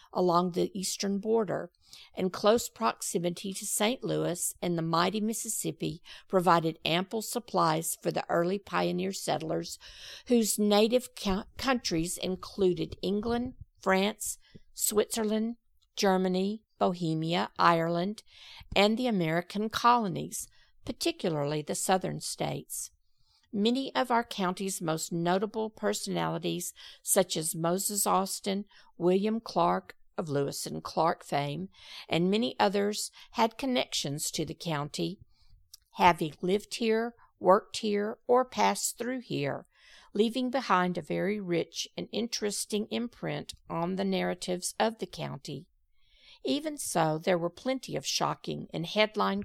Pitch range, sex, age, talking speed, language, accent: 170-215 Hz, female, 50-69, 120 wpm, English, American